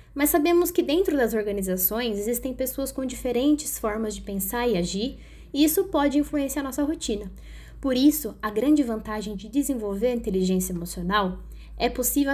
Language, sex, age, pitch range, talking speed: Portuguese, female, 10-29, 220-290 Hz, 165 wpm